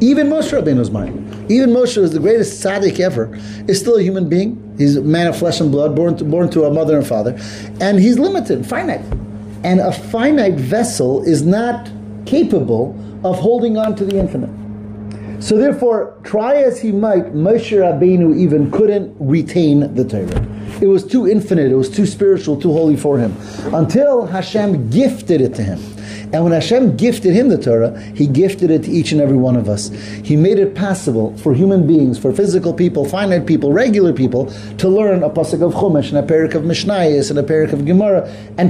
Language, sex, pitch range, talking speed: English, male, 130-200 Hz, 195 wpm